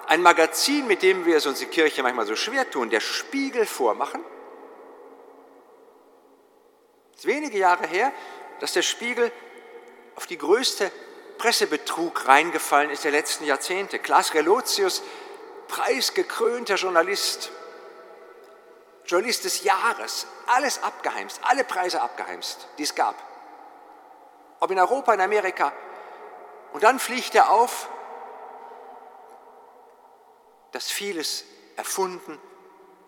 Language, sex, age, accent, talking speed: German, male, 50-69, German, 110 wpm